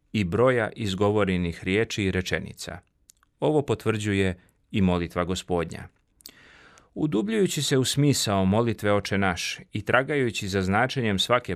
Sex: male